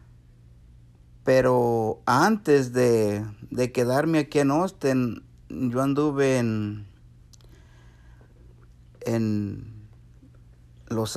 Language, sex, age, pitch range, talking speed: English, male, 50-69, 115-140 Hz, 70 wpm